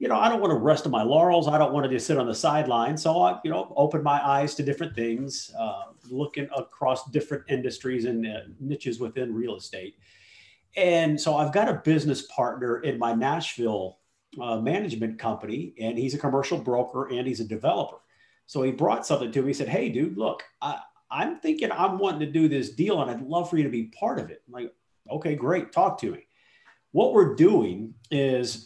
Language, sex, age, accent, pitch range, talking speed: English, male, 40-59, American, 125-170 Hz, 215 wpm